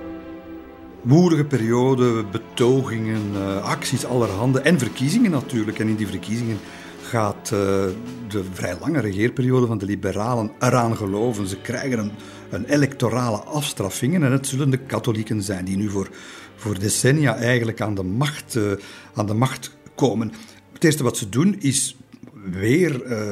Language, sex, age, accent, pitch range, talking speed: Dutch, male, 50-69, Belgian, 105-135 Hz, 135 wpm